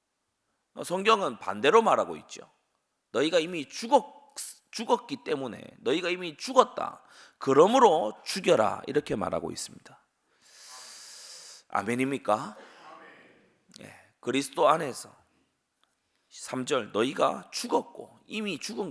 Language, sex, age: Korean, male, 30-49